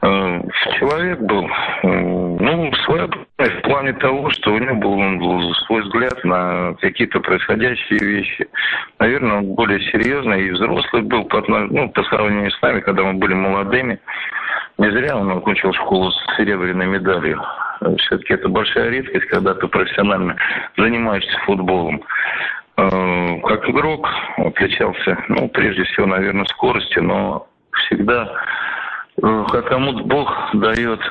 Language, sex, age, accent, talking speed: Russian, male, 50-69, native, 125 wpm